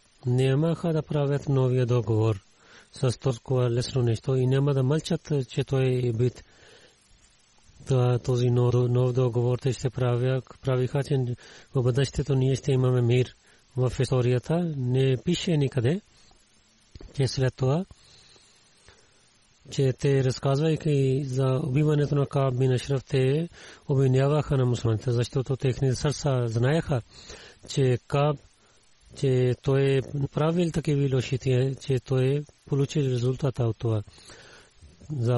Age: 30-49